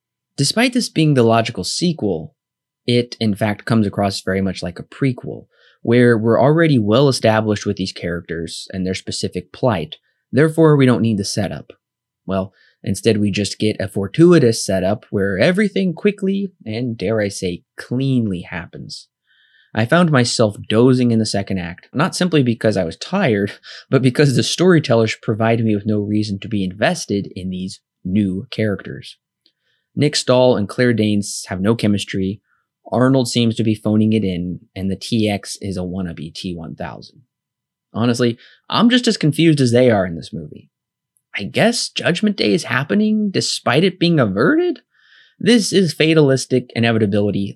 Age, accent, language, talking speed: 20-39, American, English, 160 wpm